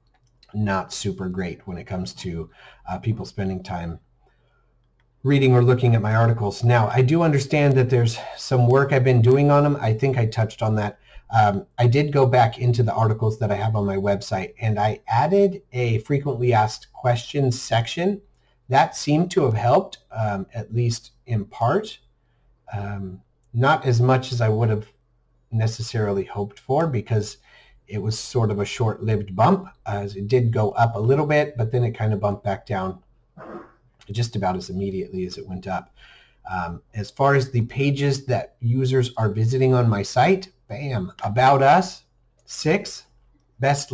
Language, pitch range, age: English, 110-135 Hz, 40-59